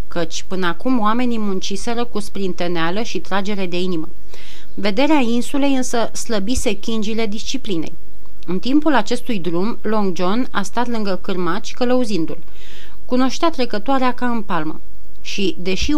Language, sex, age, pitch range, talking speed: Romanian, female, 30-49, 185-245 Hz, 130 wpm